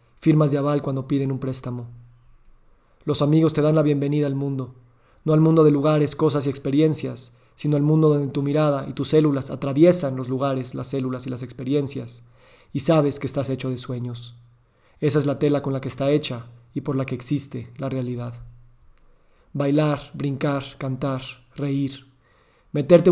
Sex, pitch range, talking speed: male, 125-150 Hz, 175 wpm